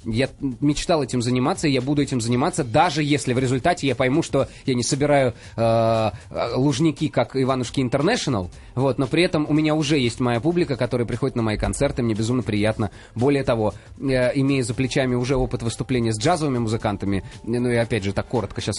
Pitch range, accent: 115-145 Hz, native